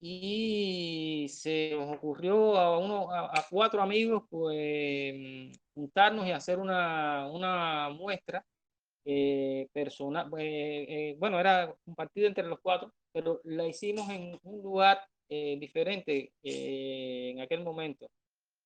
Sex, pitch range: male, 145-190 Hz